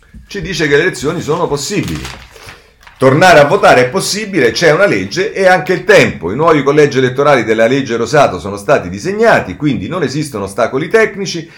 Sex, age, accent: male, 40-59, native